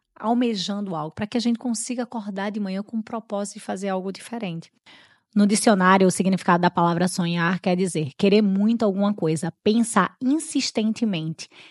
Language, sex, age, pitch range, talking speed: Portuguese, female, 20-39, 180-230 Hz, 165 wpm